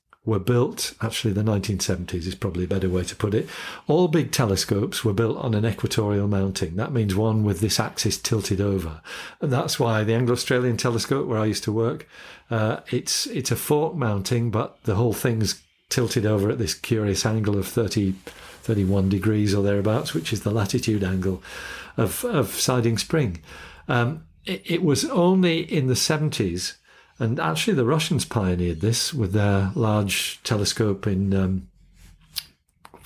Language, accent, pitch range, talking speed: English, British, 100-135 Hz, 170 wpm